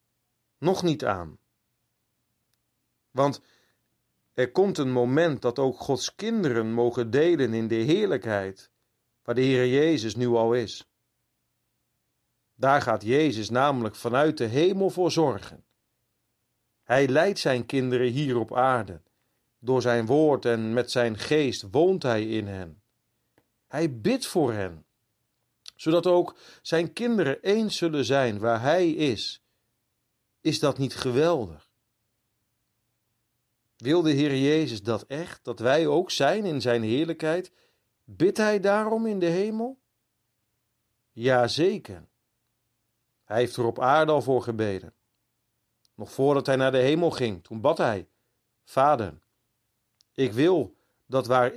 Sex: male